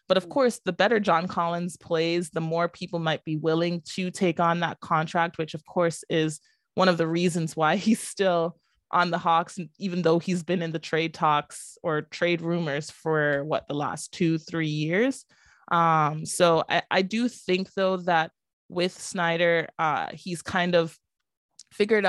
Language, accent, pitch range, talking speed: English, American, 160-185 Hz, 180 wpm